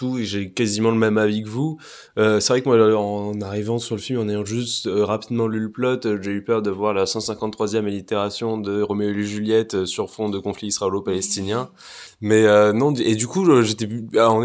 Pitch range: 105-125 Hz